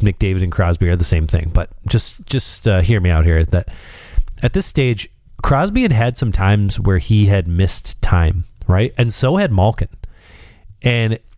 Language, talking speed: English, 185 wpm